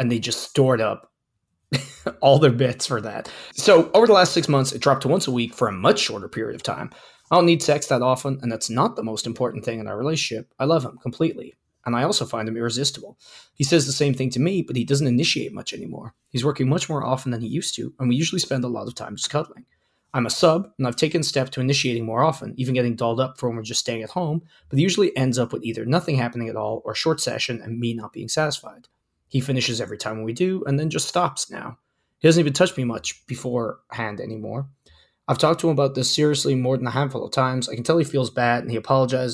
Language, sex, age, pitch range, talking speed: English, male, 20-39, 120-150 Hz, 260 wpm